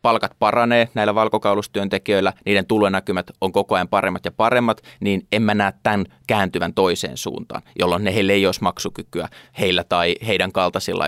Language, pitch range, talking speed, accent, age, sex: Finnish, 95-115 Hz, 165 wpm, native, 20-39, male